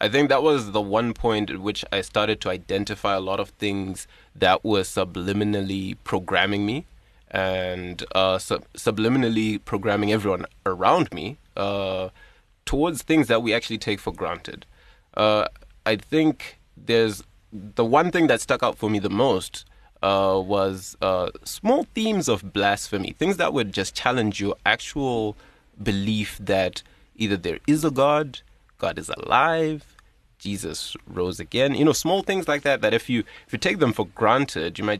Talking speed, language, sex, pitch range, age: 165 wpm, English, male, 100-135 Hz, 20-39